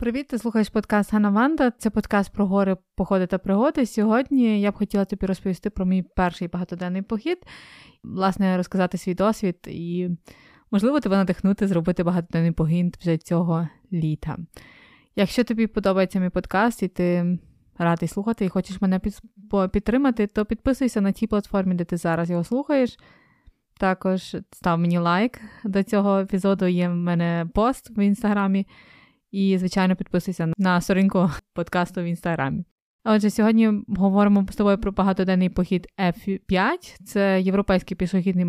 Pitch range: 175-210 Hz